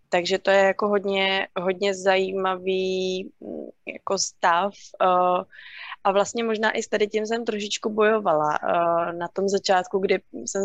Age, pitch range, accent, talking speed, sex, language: 20-39, 185-200 Hz, native, 130 wpm, female, Czech